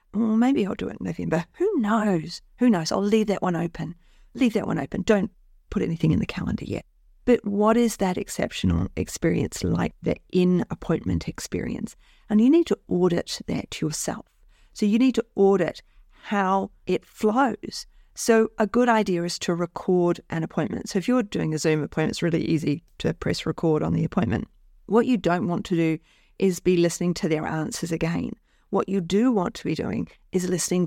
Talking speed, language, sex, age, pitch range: 190 wpm, English, female, 40-59, 170-220 Hz